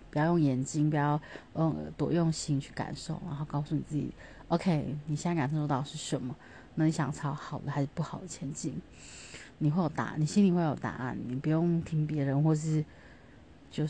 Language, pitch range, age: Chinese, 145-175 Hz, 30-49